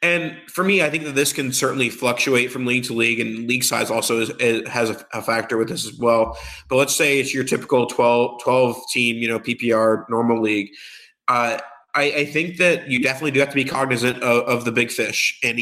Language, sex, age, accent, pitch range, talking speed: English, male, 20-39, American, 120-140 Hz, 230 wpm